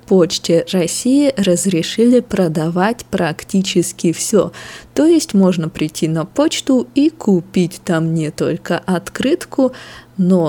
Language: Russian